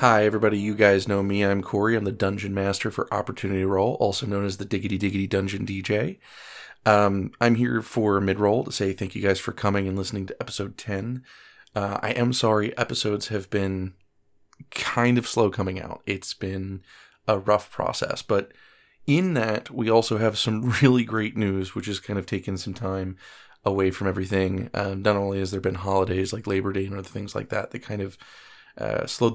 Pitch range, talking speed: 100-110 Hz, 200 wpm